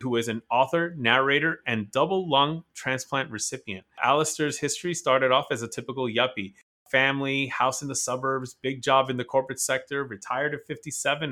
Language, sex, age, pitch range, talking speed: English, male, 30-49, 115-145 Hz, 170 wpm